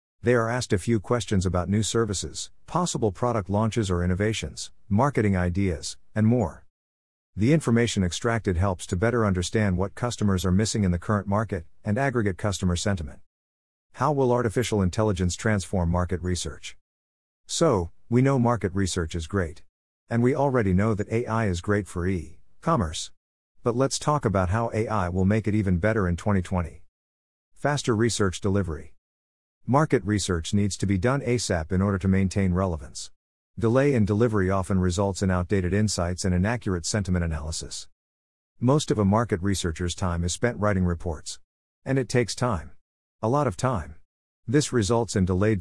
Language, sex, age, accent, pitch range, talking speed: English, male, 50-69, American, 90-110 Hz, 160 wpm